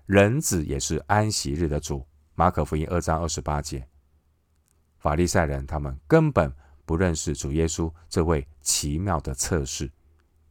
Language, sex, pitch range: Chinese, male, 75-90 Hz